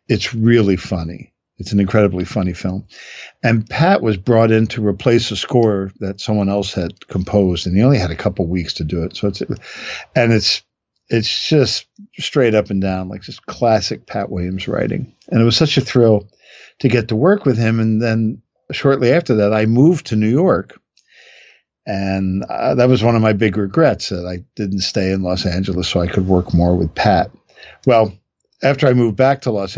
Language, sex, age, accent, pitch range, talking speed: English, male, 50-69, American, 95-115 Hz, 200 wpm